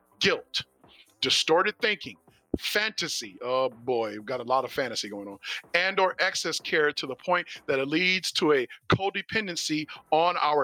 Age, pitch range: 40-59, 150-215 Hz